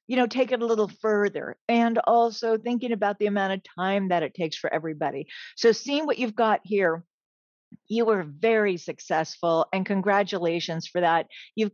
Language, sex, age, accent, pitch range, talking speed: English, female, 50-69, American, 180-220 Hz, 180 wpm